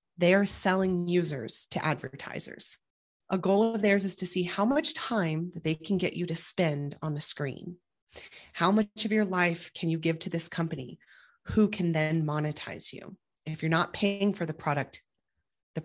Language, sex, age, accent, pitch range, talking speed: English, female, 30-49, American, 165-195 Hz, 190 wpm